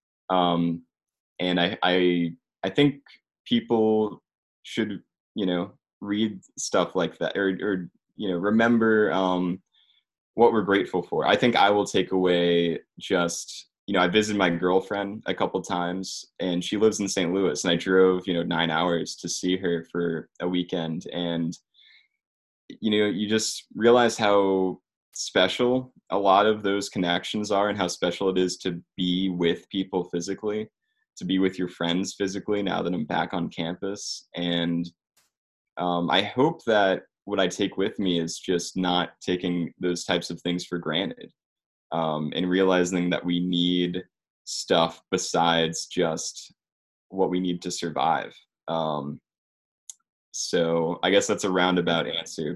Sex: male